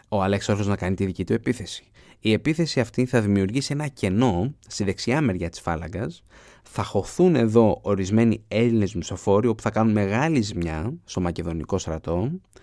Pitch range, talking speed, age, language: 95-120 Hz, 165 wpm, 20-39, Greek